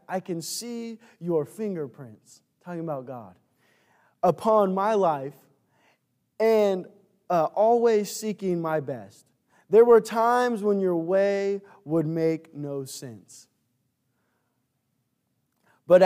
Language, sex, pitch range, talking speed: English, male, 145-195 Hz, 105 wpm